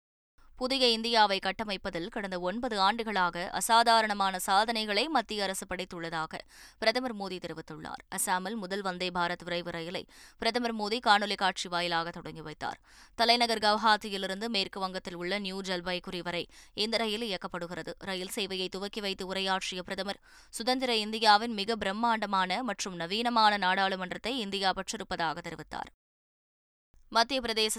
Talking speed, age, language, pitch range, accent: 115 wpm, 20-39, Tamil, 185-220 Hz, native